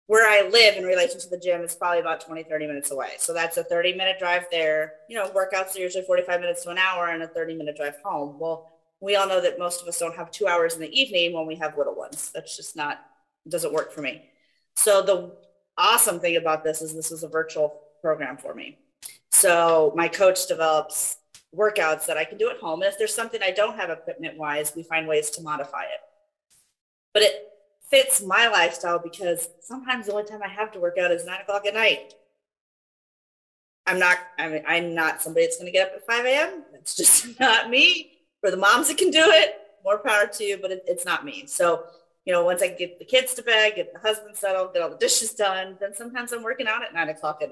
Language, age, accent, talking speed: English, 30-49, American, 235 wpm